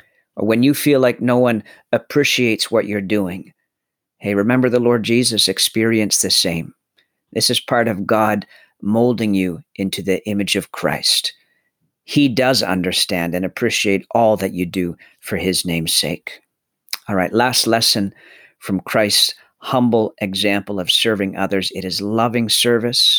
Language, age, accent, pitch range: English, 50-69, American, 95-125 Hz